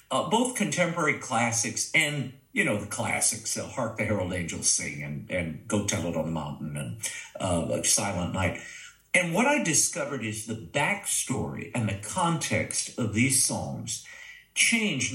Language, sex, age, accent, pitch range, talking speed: English, male, 50-69, American, 105-140 Hz, 160 wpm